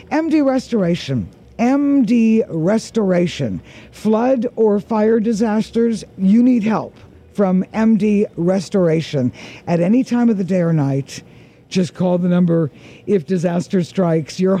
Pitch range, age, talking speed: 175-225 Hz, 60-79, 125 wpm